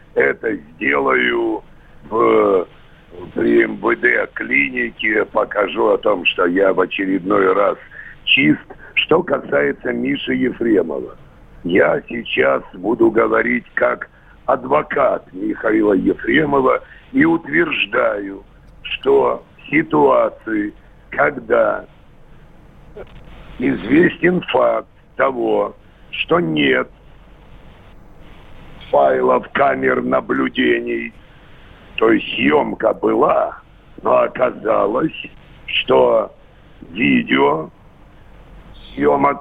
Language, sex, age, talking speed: Russian, male, 60-79, 75 wpm